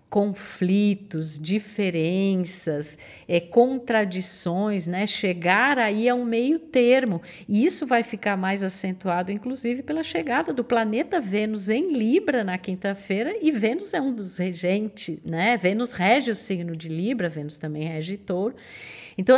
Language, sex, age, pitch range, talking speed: Portuguese, female, 40-59, 195-245 Hz, 135 wpm